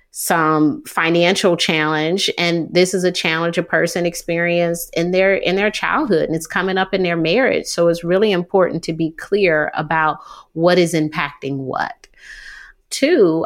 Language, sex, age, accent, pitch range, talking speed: English, female, 30-49, American, 155-200 Hz, 160 wpm